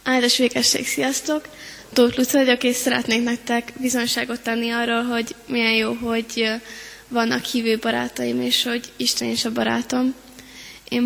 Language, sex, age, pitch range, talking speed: Hungarian, female, 20-39, 225-245 Hz, 140 wpm